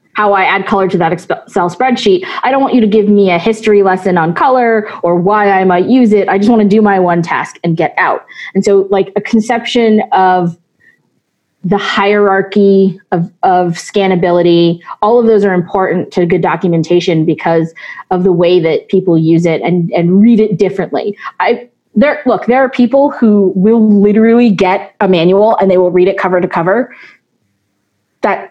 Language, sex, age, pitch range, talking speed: English, female, 20-39, 185-225 Hz, 185 wpm